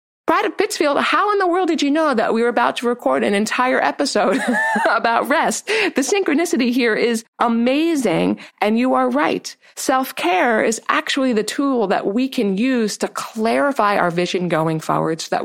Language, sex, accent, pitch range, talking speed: English, female, American, 185-260 Hz, 185 wpm